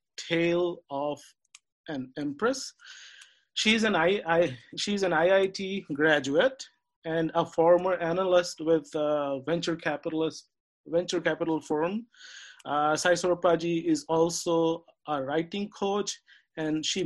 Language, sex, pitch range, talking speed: English, male, 155-195 Hz, 120 wpm